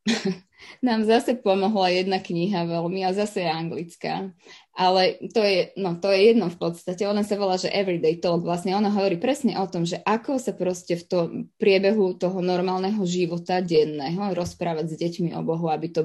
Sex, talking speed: female, 185 wpm